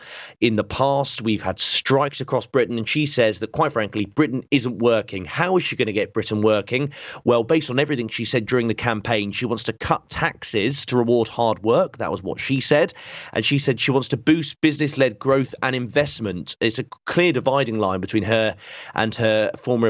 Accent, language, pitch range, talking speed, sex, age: British, English, 105-135 Hz, 210 wpm, male, 30-49